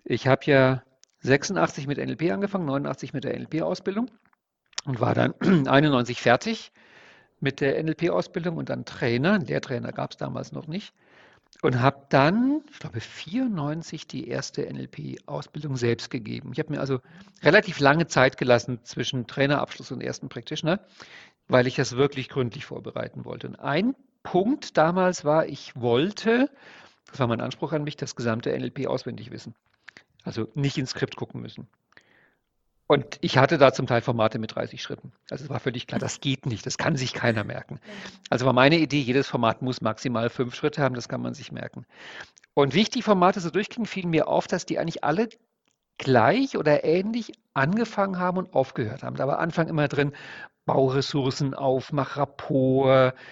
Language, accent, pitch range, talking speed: German, German, 130-175 Hz, 170 wpm